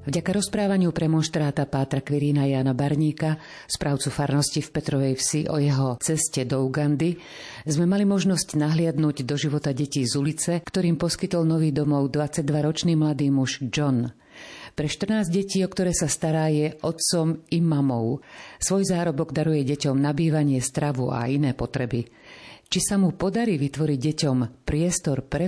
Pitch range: 140-170 Hz